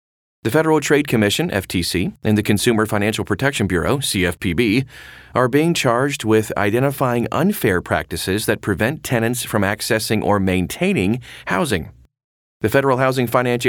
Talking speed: 135 wpm